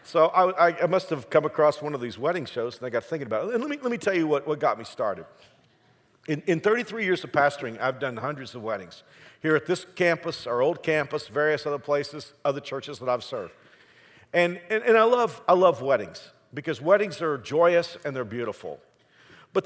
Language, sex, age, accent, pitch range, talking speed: English, male, 50-69, American, 140-175 Hz, 220 wpm